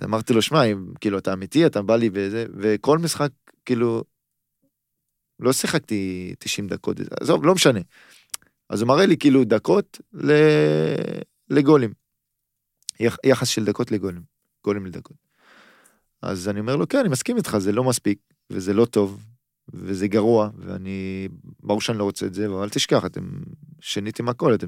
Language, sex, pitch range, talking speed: Hebrew, male, 100-130 Hz, 155 wpm